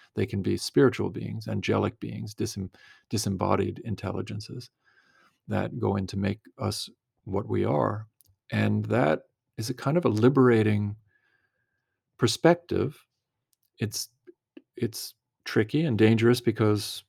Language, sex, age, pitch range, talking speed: English, male, 40-59, 100-120 Hz, 120 wpm